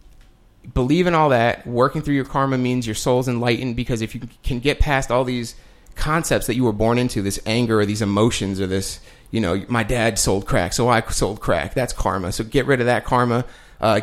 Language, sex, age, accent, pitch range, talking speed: English, male, 30-49, American, 110-135 Hz, 225 wpm